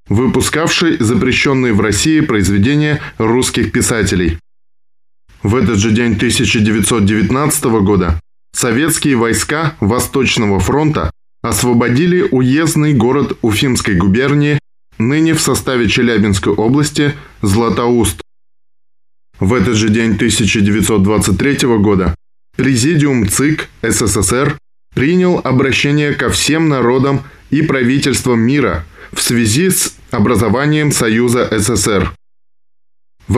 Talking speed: 95 wpm